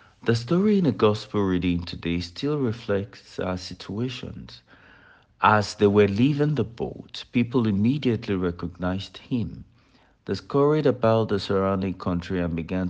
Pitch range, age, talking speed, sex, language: 90-120 Hz, 60-79, 135 wpm, male, English